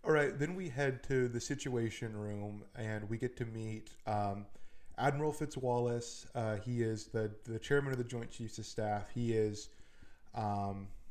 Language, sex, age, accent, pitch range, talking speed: English, male, 20-39, American, 105-125 Hz, 165 wpm